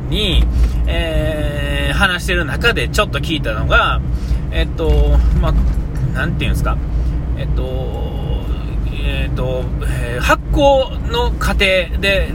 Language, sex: Japanese, male